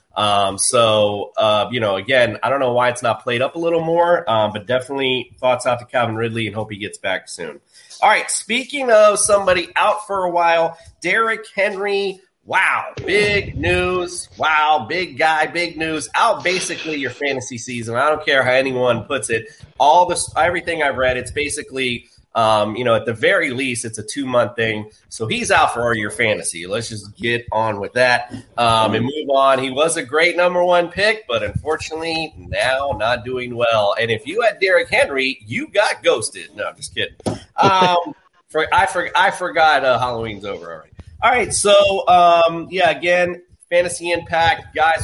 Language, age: English, 30-49